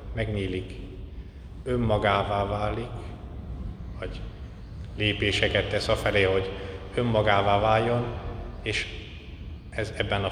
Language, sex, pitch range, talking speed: Hungarian, male, 90-110 Hz, 80 wpm